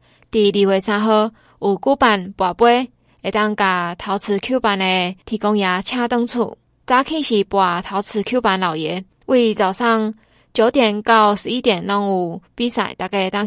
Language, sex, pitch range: Chinese, female, 195-235 Hz